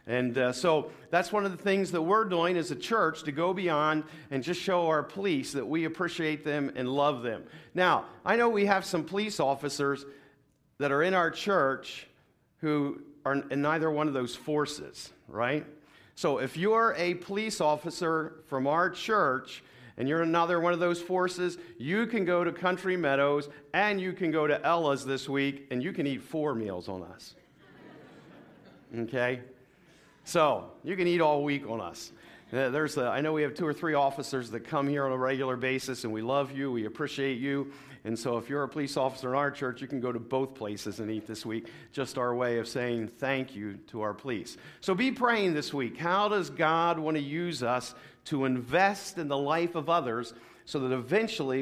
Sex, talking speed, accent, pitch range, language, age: male, 200 wpm, American, 130-170 Hz, English, 50-69